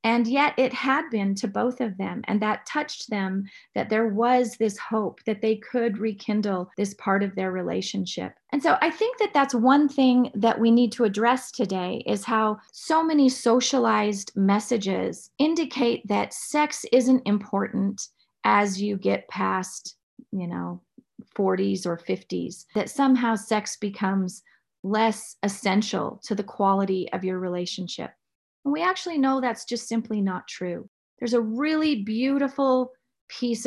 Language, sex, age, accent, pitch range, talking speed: English, female, 30-49, American, 200-255 Hz, 155 wpm